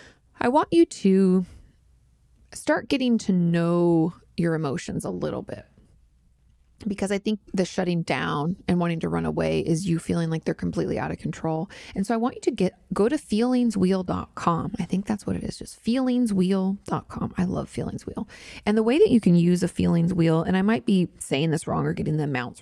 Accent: American